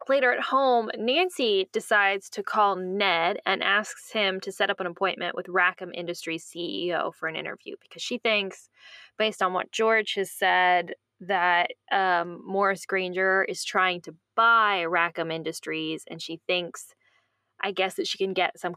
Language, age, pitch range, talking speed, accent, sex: English, 10-29, 175-215 Hz, 165 wpm, American, female